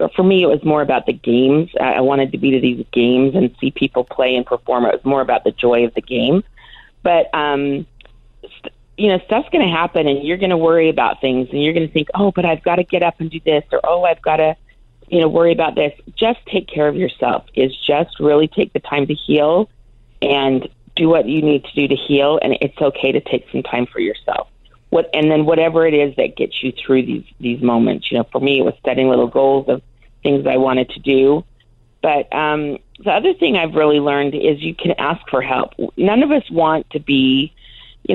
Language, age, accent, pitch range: English, 40-59, American, 130-165 Hz